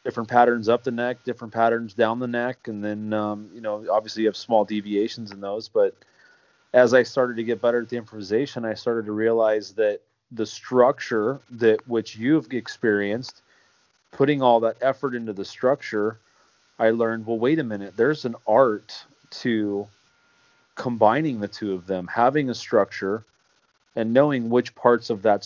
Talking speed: 175 wpm